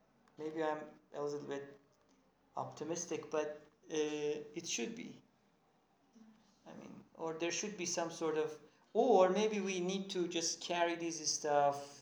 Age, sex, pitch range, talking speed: 40-59, male, 140-170 Hz, 145 wpm